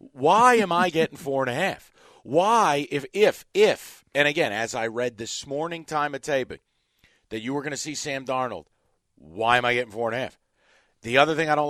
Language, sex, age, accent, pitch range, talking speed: English, male, 40-59, American, 110-140 Hz, 220 wpm